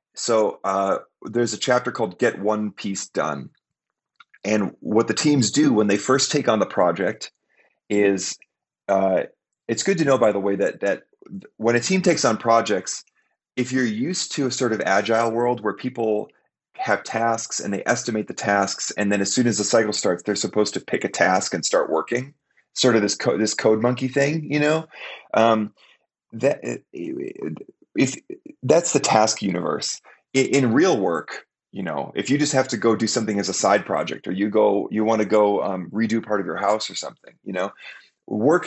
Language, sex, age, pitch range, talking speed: English, male, 30-49, 105-140 Hz, 195 wpm